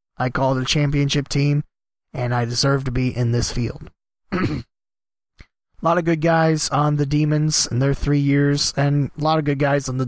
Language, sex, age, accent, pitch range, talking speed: English, male, 20-39, American, 125-145 Hz, 200 wpm